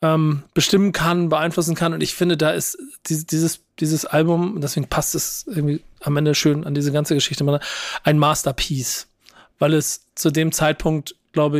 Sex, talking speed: male, 160 wpm